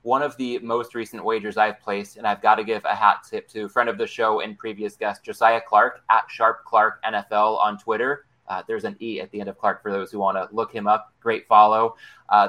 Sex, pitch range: male, 105-125 Hz